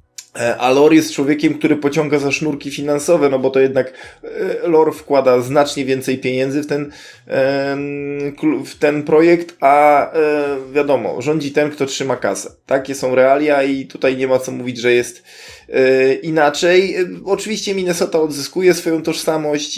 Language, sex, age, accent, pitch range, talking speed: Polish, male, 20-39, native, 135-165 Hz, 145 wpm